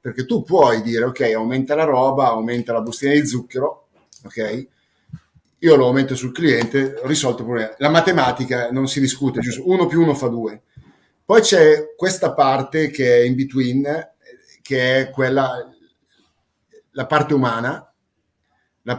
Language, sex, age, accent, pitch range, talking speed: Italian, male, 30-49, native, 115-145 Hz, 155 wpm